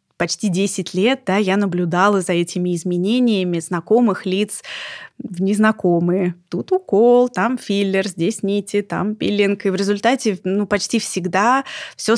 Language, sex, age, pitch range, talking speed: Russian, female, 20-39, 180-215 Hz, 140 wpm